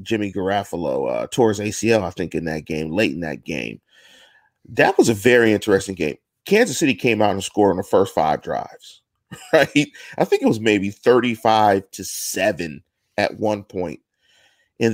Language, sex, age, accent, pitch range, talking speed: English, male, 40-59, American, 95-120 Hz, 175 wpm